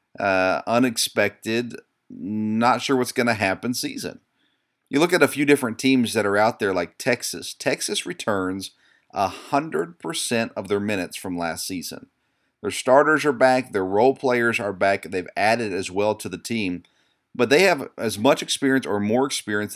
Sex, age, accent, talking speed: male, 40-59, American, 170 wpm